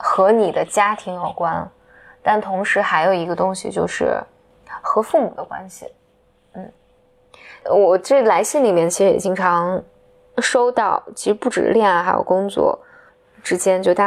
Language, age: Chinese, 20-39